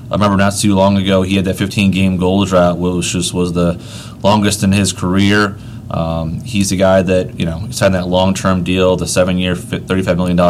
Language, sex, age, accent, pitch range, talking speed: English, male, 30-49, American, 90-105 Hz, 230 wpm